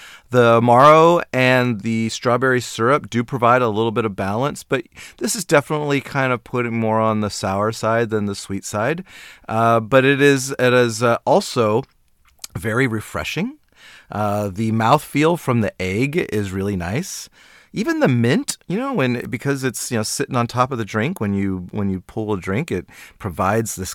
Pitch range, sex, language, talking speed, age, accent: 105-130 Hz, male, English, 185 wpm, 40-59, American